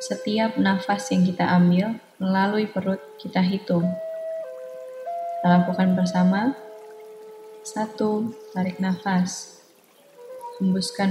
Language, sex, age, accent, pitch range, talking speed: English, female, 20-39, Indonesian, 180-215 Hz, 85 wpm